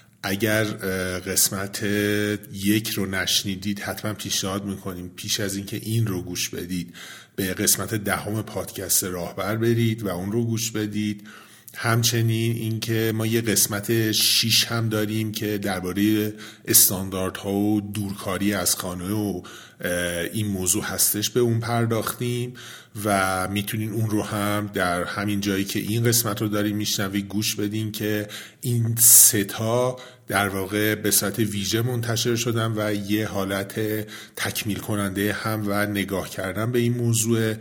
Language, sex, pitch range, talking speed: Persian, male, 95-110 Hz, 140 wpm